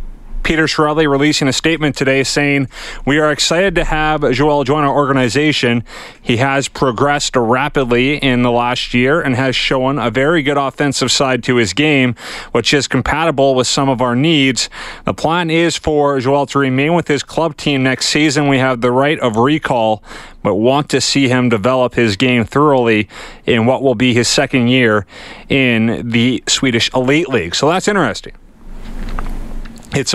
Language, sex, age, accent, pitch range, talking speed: English, male, 30-49, American, 120-145 Hz, 175 wpm